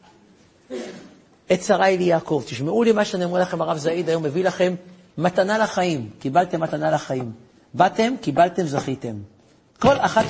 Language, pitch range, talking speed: Hebrew, 150-210 Hz, 145 wpm